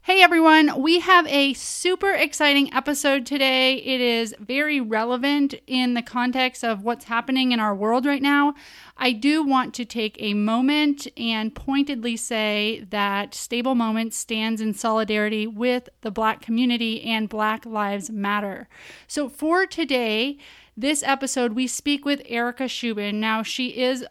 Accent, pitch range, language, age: American, 230-275 Hz, English, 30-49